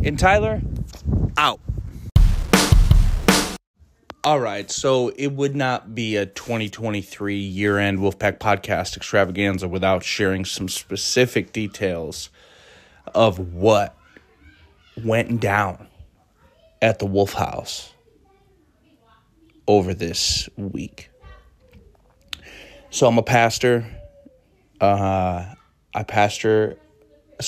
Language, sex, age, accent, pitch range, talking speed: English, male, 20-39, American, 95-110 Hz, 90 wpm